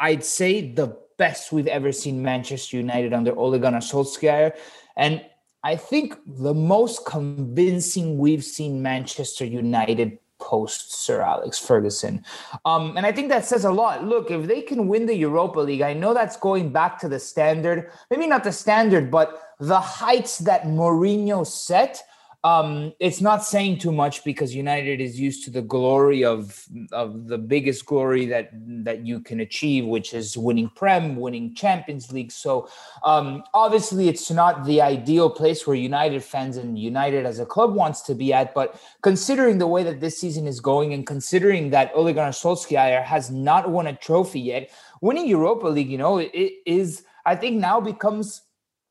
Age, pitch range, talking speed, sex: 30-49, 135-185 Hz, 175 wpm, male